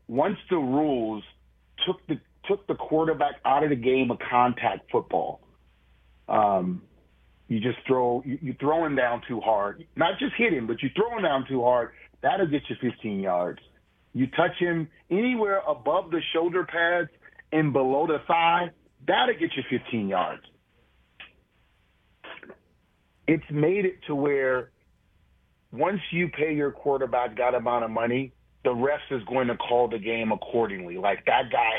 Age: 40-59